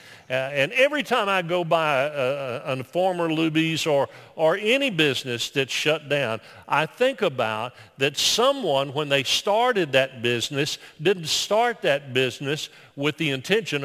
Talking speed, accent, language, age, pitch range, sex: 155 wpm, American, English, 50-69, 145-195 Hz, male